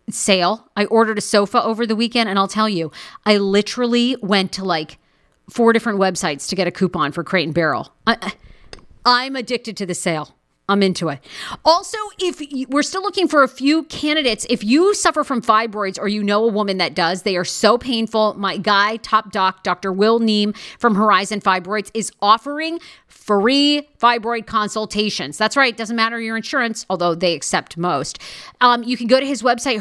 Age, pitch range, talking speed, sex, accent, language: 40-59, 190-245 Hz, 185 wpm, female, American, English